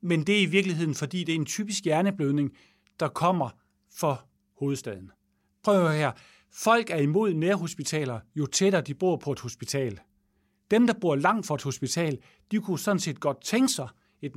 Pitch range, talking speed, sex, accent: 130-195 Hz, 185 wpm, male, Danish